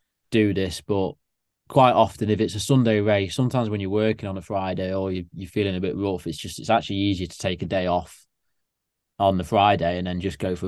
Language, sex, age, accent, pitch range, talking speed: English, male, 20-39, British, 95-110 Hz, 230 wpm